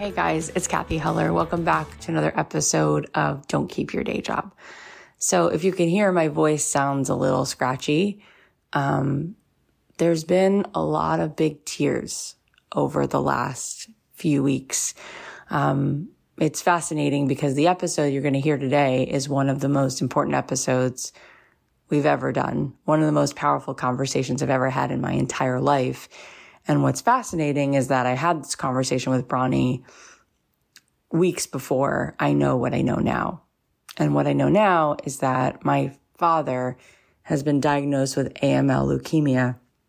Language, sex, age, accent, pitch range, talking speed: English, female, 20-39, American, 125-155 Hz, 160 wpm